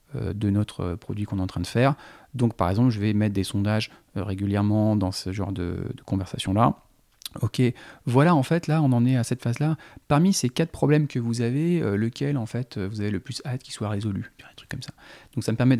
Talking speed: 230 wpm